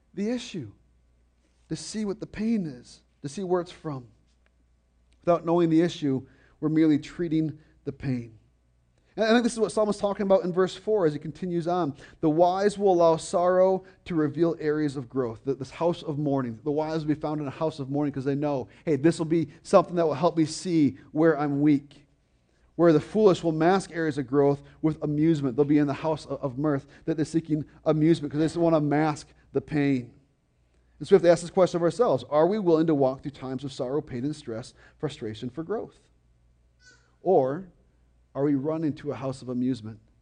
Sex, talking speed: male, 210 wpm